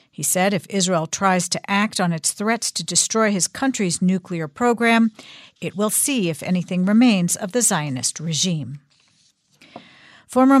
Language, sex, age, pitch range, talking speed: English, female, 50-69, 170-215 Hz, 155 wpm